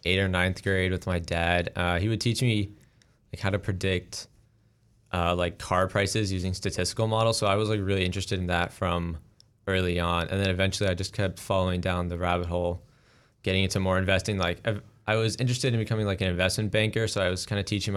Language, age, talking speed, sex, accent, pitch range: English, 20-39, 220 wpm, male, American, 90-105 Hz